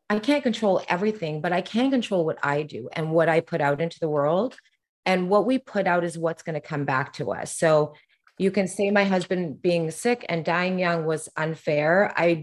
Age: 30-49